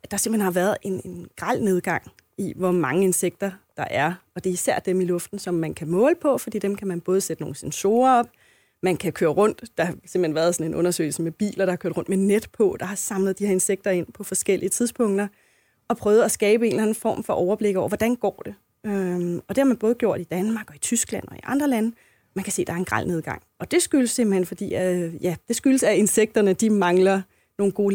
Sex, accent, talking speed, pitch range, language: female, native, 245 wpm, 185-230 Hz, Danish